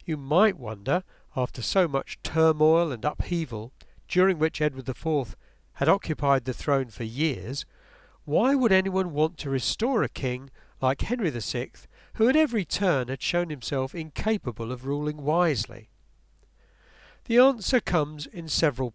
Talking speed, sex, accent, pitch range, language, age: 145 wpm, male, British, 125-190 Hz, English, 50-69